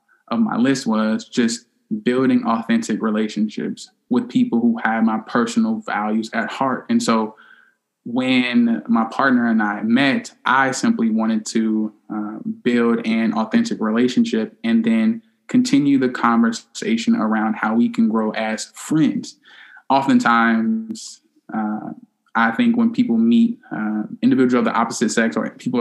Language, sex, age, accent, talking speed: English, male, 20-39, American, 140 wpm